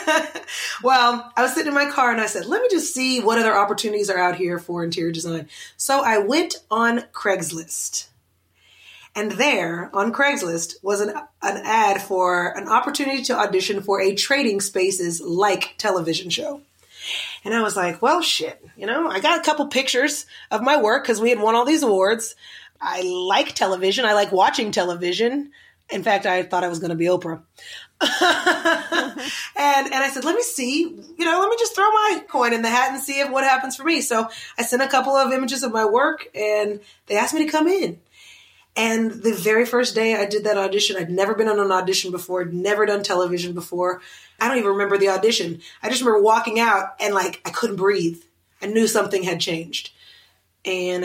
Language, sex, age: English, female, 30-49